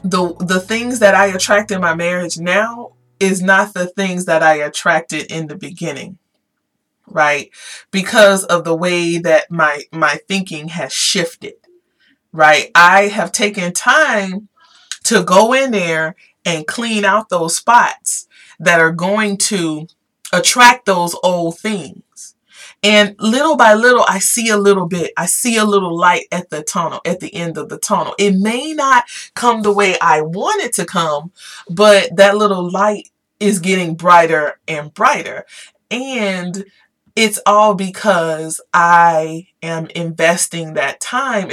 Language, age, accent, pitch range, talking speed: English, 30-49, American, 170-220 Hz, 150 wpm